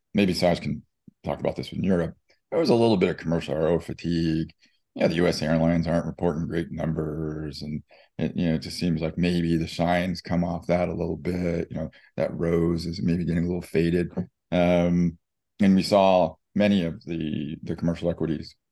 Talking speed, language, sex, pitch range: 205 wpm, English, male, 80-90 Hz